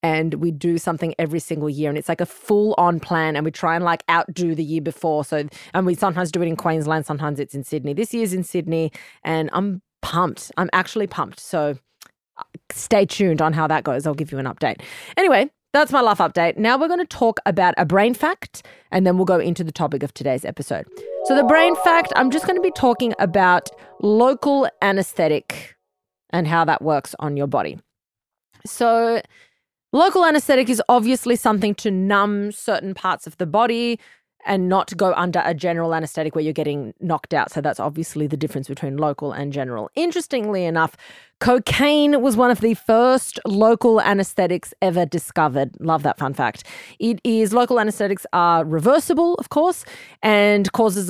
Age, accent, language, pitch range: 30-49, Australian, English, 160-225 Hz